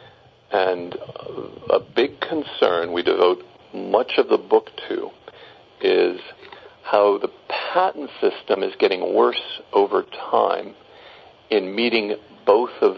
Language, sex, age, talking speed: English, male, 50-69, 115 wpm